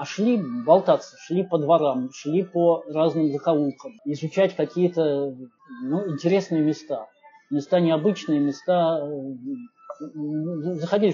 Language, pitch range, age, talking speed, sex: Russian, 150-180 Hz, 20-39, 100 wpm, male